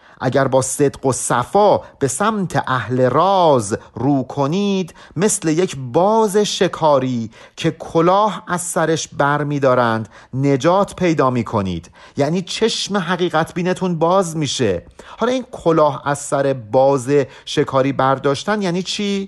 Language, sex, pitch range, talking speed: Persian, male, 125-180 Hz, 125 wpm